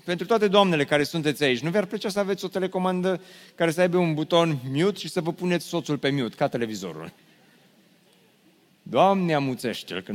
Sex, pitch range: male, 145-190 Hz